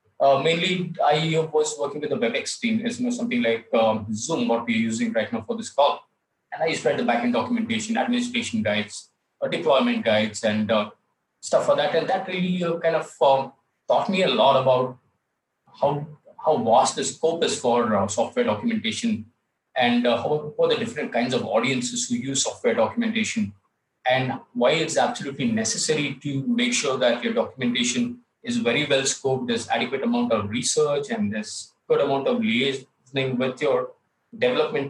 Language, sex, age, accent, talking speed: English, male, 20-39, Indian, 180 wpm